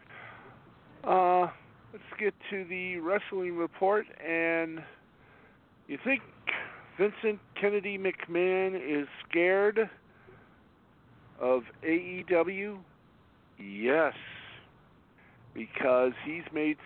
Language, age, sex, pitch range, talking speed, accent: English, 50-69, male, 115-165 Hz, 75 wpm, American